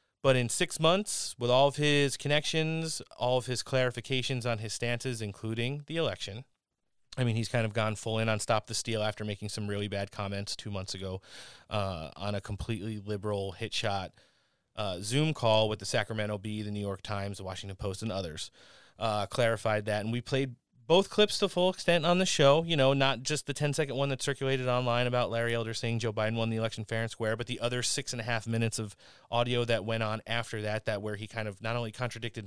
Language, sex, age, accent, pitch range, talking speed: English, male, 30-49, American, 105-130 Hz, 225 wpm